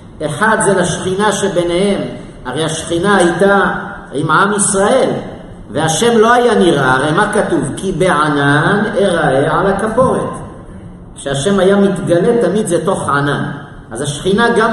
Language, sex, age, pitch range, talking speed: Hebrew, male, 50-69, 155-210 Hz, 130 wpm